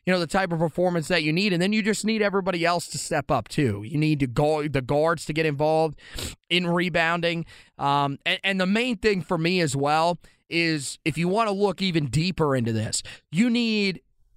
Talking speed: 215 wpm